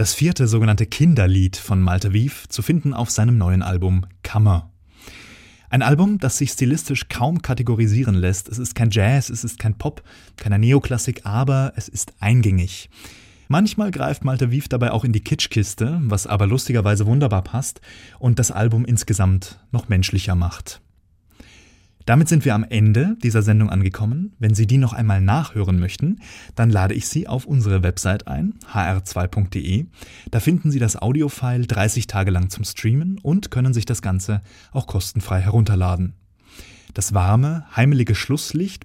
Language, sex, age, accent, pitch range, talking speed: German, male, 20-39, German, 95-130 Hz, 160 wpm